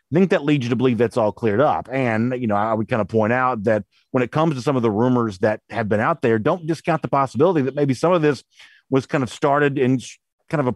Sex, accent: male, American